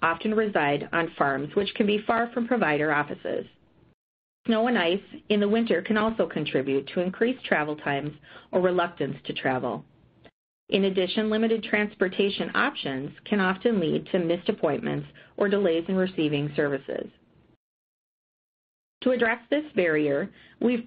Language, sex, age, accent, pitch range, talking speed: English, female, 40-59, American, 155-220 Hz, 140 wpm